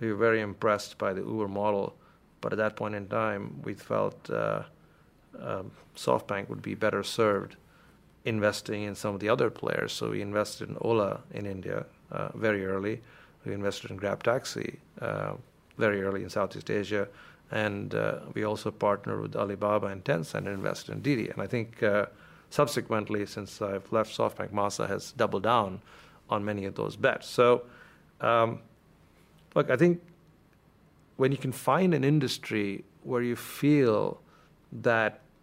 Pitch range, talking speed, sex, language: 105-130 Hz, 165 wpm, male, English